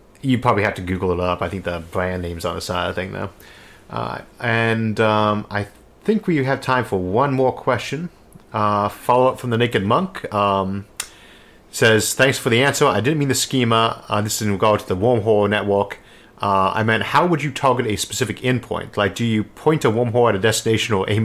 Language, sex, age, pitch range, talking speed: English, male, 30-49, 95-120 Hz, 225 wpm